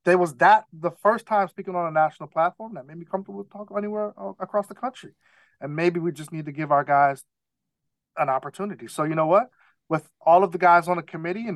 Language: English